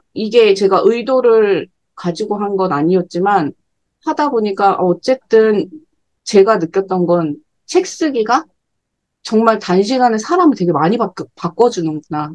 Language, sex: Korean, female